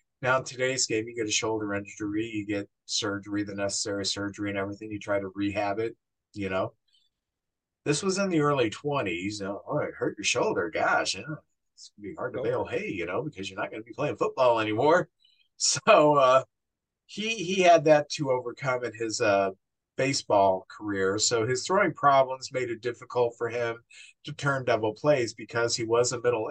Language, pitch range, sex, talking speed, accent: English, 110-140 Hz, male, 200 wpm, American